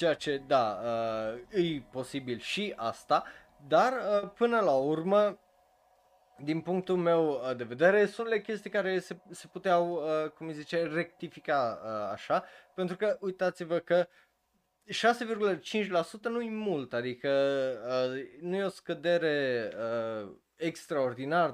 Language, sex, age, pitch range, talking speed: Romanian, male, 20-39, 120-175 Hz, 115 wpm